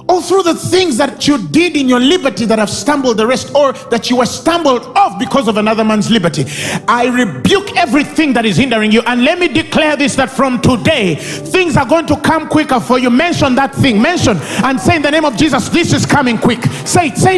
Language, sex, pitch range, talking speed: English, male, 250-330 Hz, 235 wpm